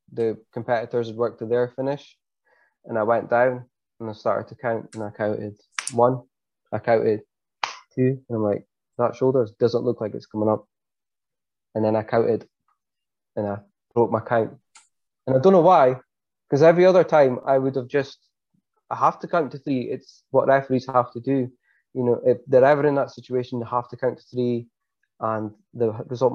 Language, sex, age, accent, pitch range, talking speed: English, male, 20-39, British, 115-135 Hz, 195 wpm